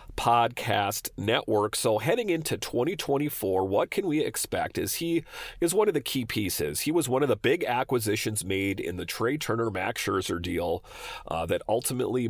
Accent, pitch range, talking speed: American, 105-125 Hz, 170 wpm